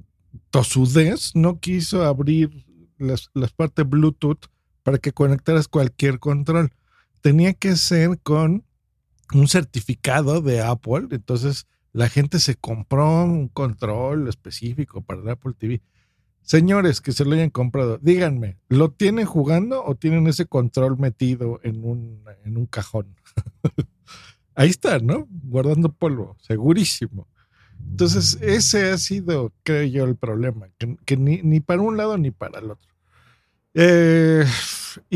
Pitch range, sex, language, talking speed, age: 115-160 Hz, male, Spanish, 135 wpm, 50-69